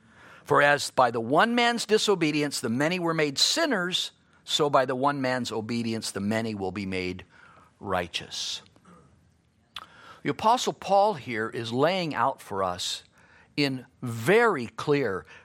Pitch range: 125-195 Hz